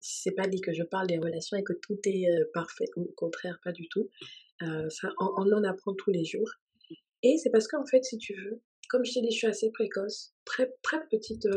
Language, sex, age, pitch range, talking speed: French, female, 20-39, 180-220 Hz, 245 wpm